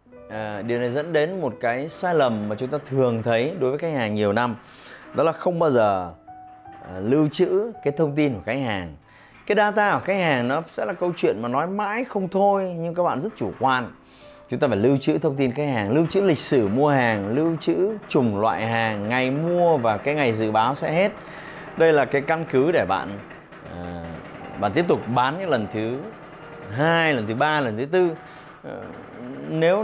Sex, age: male, 20-39